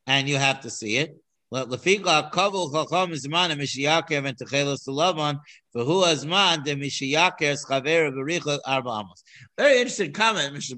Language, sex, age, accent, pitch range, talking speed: English, male, 50-69, American, 125-160 Hz, 55 wpm